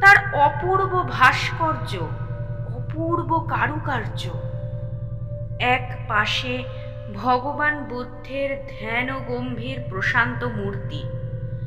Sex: female